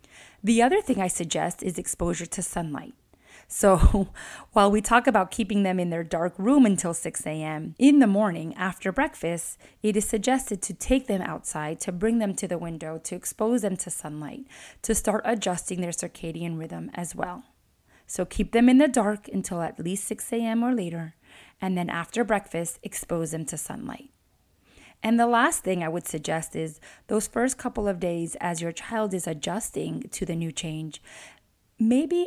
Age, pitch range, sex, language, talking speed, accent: 20-39, 170-225 Hz, female, English, 180 wpm, American